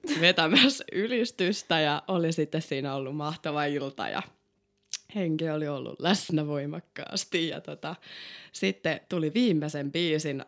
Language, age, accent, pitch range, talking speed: Finnish, 20-39, native, 155-225 Hz, 120 wpm